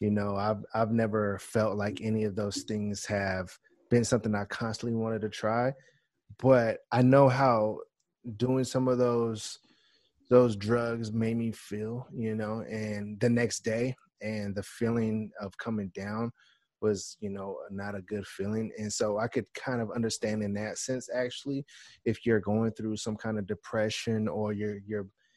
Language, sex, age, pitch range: English, male, 20-39, 100-110 Hz